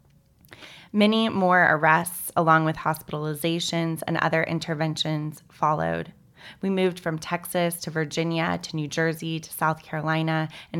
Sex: female